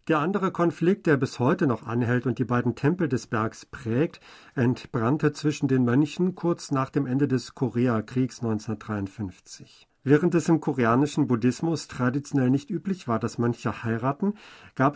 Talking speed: 155 wpm